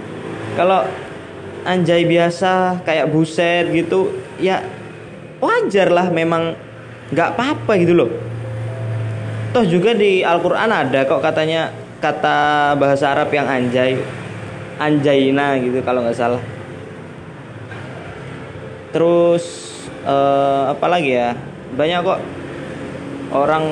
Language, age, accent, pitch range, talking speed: Indonesian, 20-39, native, 140-185 Hz, 100 wpm